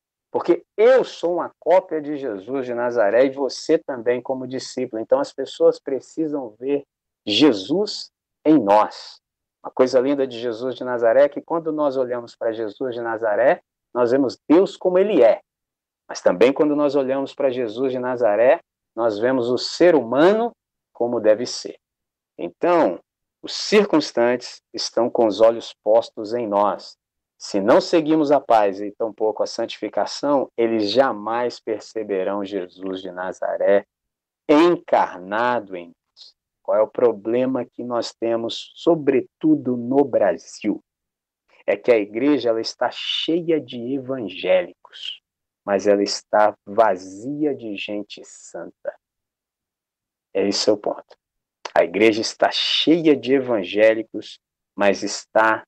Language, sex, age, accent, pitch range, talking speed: Portuguese, male, 50-69, Brazilian, 110-155 Hz, 135 wpm